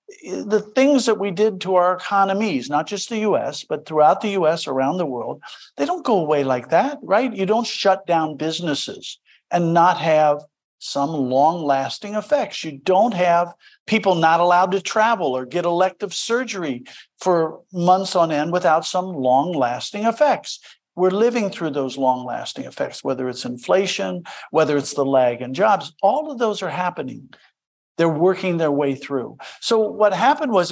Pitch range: 160-220 Hz